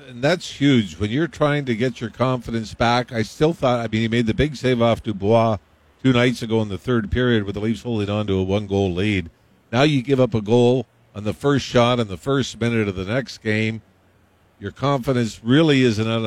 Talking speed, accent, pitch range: 225 wpm, American, 100-125 Hz